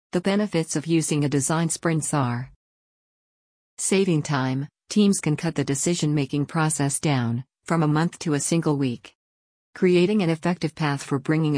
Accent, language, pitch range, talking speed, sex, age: American, English, 135-170 Hz, 155 wpm, female, 50-69